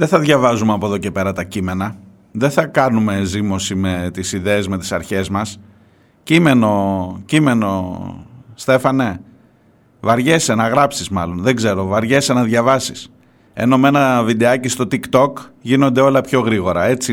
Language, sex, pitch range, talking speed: Greek, male, 110-140 Hz, 150 wpm